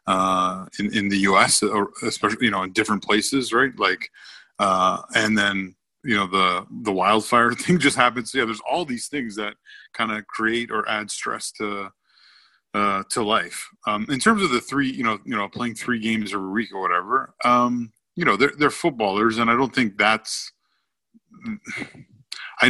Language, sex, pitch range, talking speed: English, male, 105-125 Hz, 180 wpm